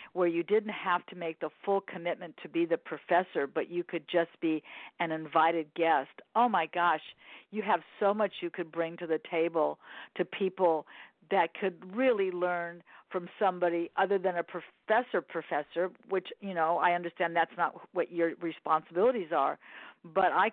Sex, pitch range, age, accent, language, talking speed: female, 170-200 Hz, 50-69, American, English, 175 wpm